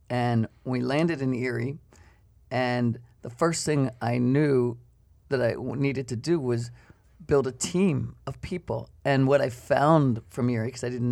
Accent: American